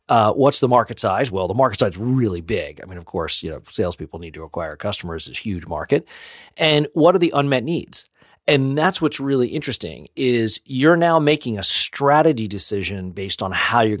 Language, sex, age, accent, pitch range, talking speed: English, male, 40-59, American, 95-130 Hz, 205 wpm